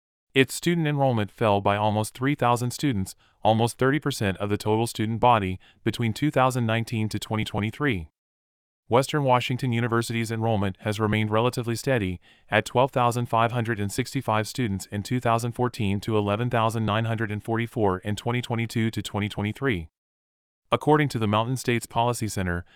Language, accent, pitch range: English, American, 100-120 Hz